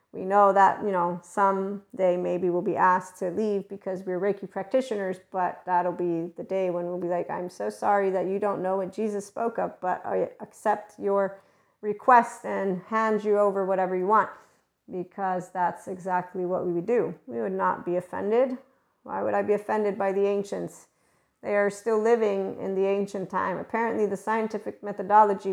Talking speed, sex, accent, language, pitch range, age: 190 wpm, female, American, English, 180-205 Hz, 40-59